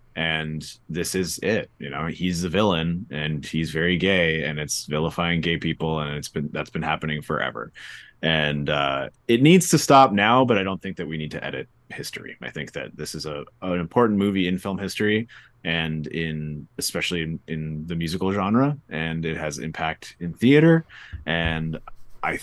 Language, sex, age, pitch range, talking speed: English, male, 30-49, 75-115 Hz, 185 wpm